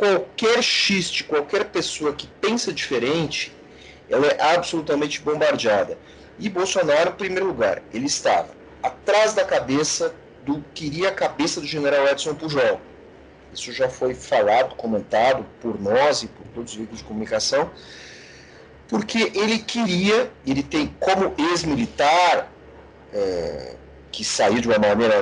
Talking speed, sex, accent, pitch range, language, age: 135 wpm, male, Brazilian, 125-190 Hz, Portuguese, 40-59